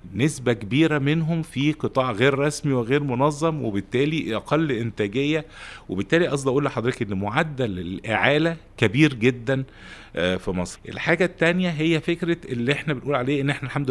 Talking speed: 145 wpm